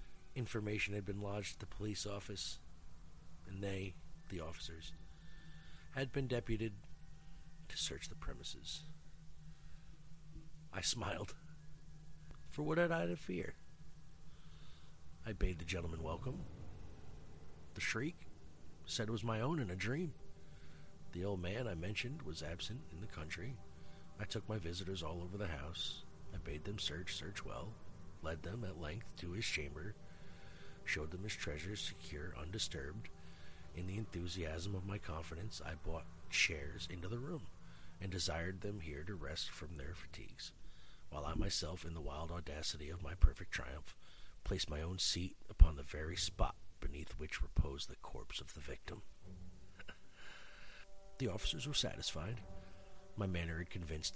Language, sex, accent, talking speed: English, male, American, 150 wpm